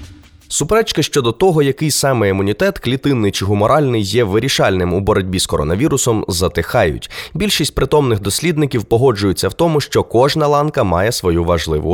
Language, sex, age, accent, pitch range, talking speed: Ukrainian, male, 20-39, native, 95-145 Hz, 140 wpm